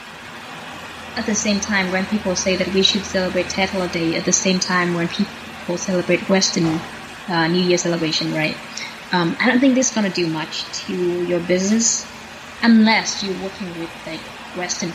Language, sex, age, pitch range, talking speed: Vietnamese, female, 20-39, 175-210 Hz, 175 wpm